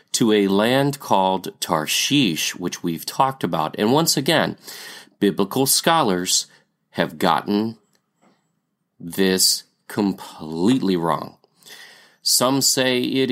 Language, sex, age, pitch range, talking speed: English, male, 30-49, 95-140 Hz, 100 wpm